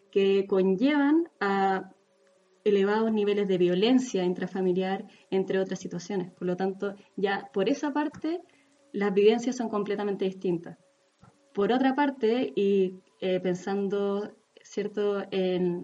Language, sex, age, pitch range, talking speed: Spanish, female, 20-39, 190-225 Hz, 115 wpm